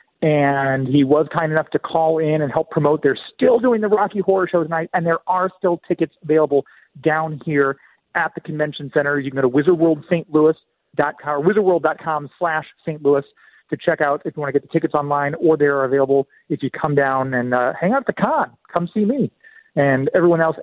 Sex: male